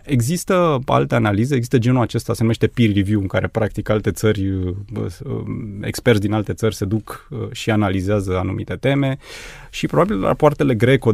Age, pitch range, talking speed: 20-39, 105-125 Hz, 155 wpm